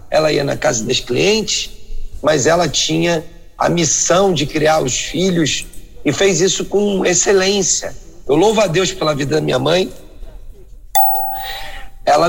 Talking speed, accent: 145 wpm, Brazilian